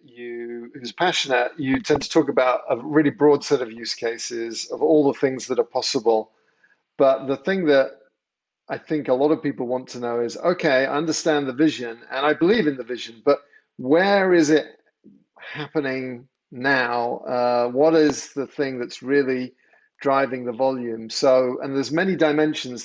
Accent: British